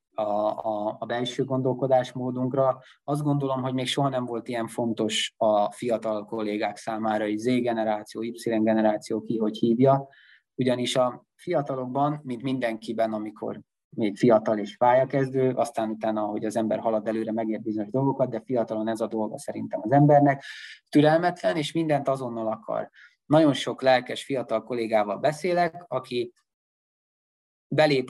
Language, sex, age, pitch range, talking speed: Hungarian, male, 20-39, 110-140 Hz, 145 wpm